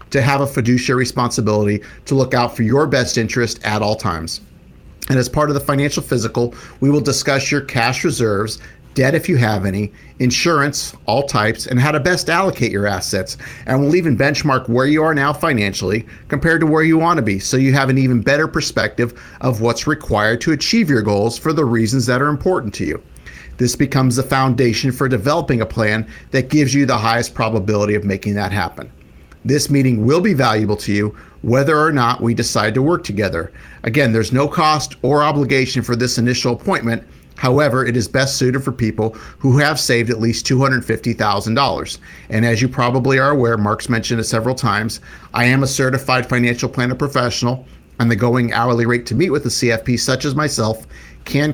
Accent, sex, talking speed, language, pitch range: American, male, 195 wpm, English, 110-140 Hz